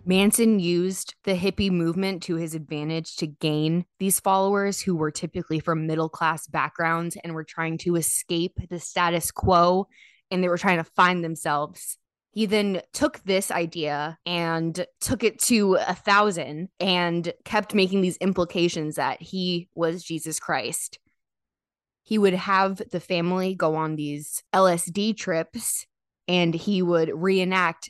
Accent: American